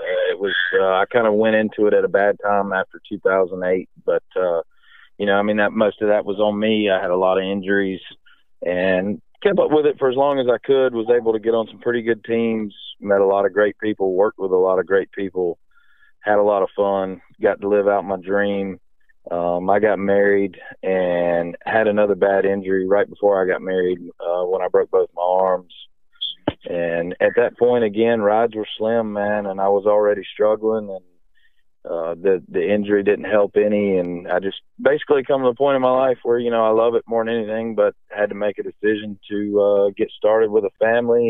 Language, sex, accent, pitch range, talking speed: English, male, American, 100-130 Hz, 225 wpm